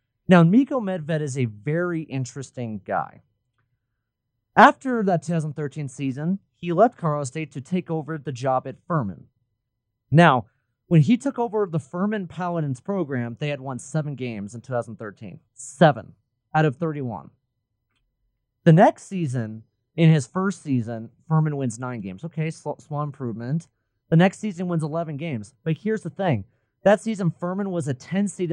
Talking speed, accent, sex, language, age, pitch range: 155 wpm, American, male, English, 30-49, 125-175 Hz